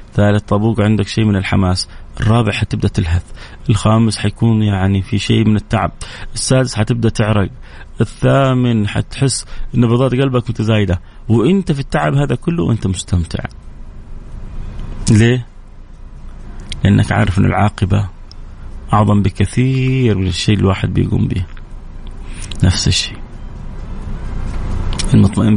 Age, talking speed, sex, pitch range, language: 30-49, 110 wpm, male, 90-110 Hz, Arabic